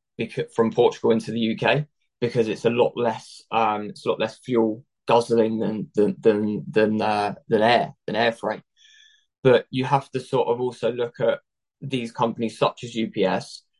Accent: British